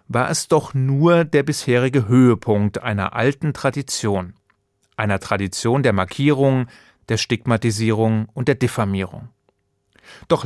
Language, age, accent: German, 30-49, German